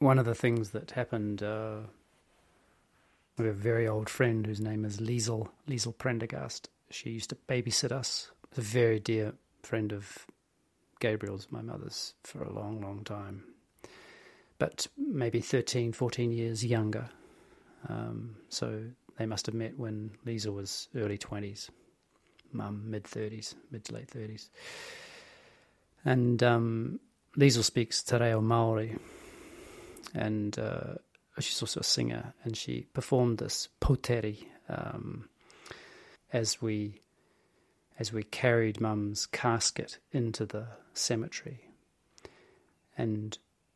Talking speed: 125 wpm